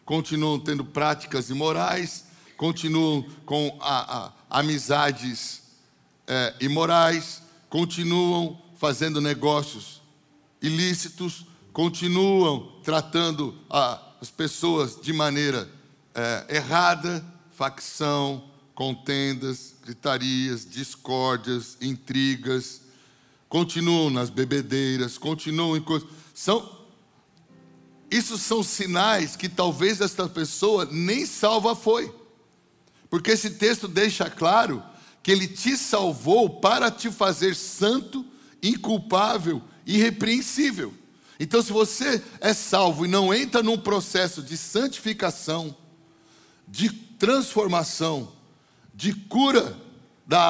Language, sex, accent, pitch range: English, male, Brazilian, 145-200 Hz